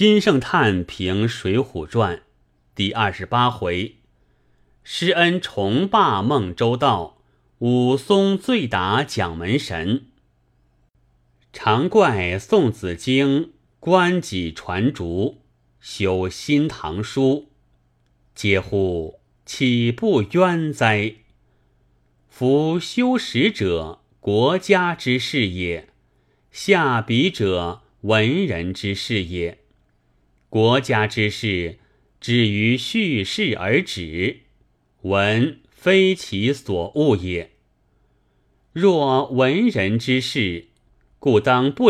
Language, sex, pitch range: Chinese, male, 90-135 Hz